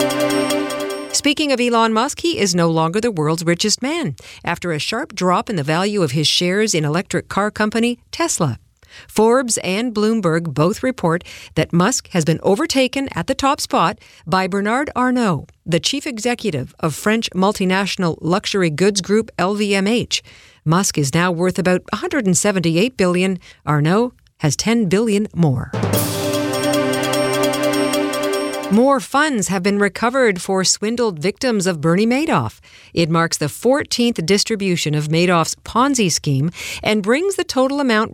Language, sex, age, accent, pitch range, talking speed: English, female, 50-69, American, 160-225 Hz, 145 wpm